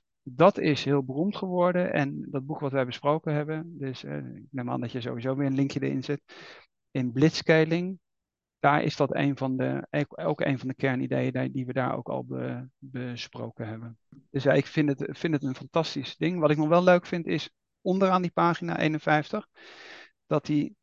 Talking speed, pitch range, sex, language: 200 wpm, 135-165 Hz, male, Dutch